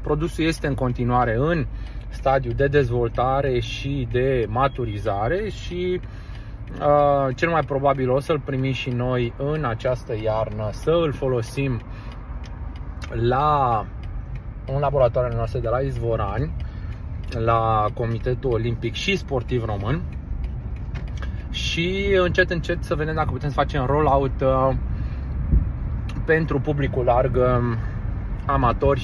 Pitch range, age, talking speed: 115-140 Hz, 20-39, 110 wpm